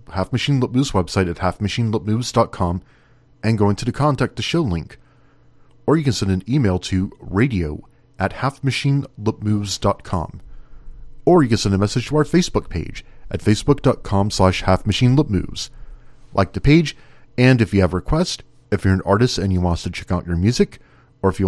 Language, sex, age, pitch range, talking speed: English, male, 40-59, 95-135 Hz, 185 wpm